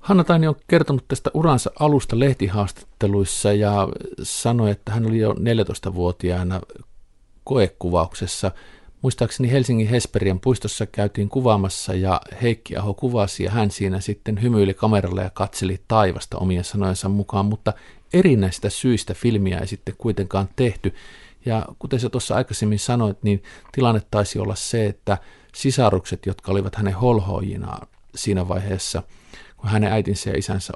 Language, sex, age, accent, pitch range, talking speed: Finnish, male, 50-69, native, 95-120 Hz, 135 wpm